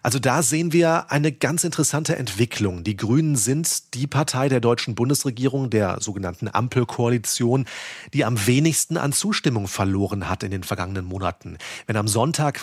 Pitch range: 110-135 Hz